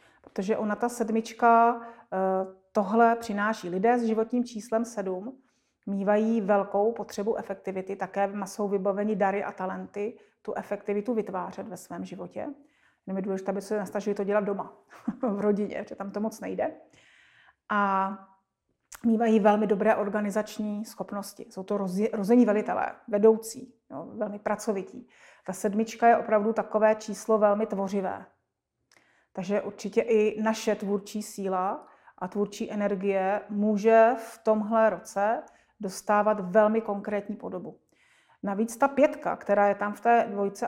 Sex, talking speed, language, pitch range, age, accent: female, 135 wpm, Czech, 200-225 Hz, 30-49, native